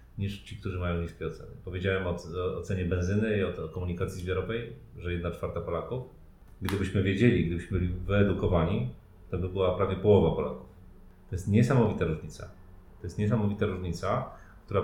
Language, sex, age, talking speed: Polish, male, 40-59, 160 wpm